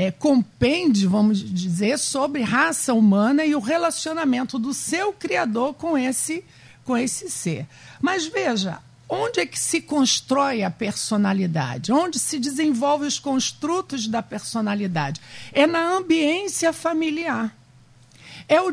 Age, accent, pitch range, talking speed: 50-69, Brazilian, 210-310 Hz, 120 wpm